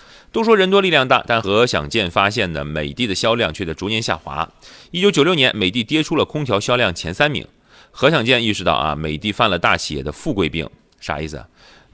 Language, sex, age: Chinese, male, 30-49